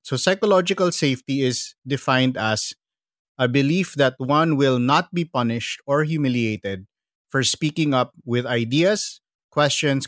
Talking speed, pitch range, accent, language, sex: 130 wpm, 120-145 Hz, Filipino, English, male